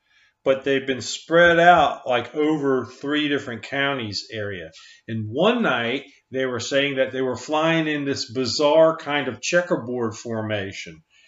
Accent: American